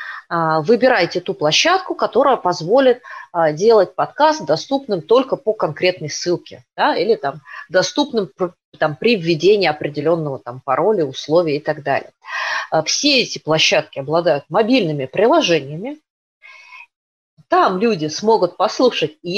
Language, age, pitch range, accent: Russian, 30-49, 165-255 Hz, native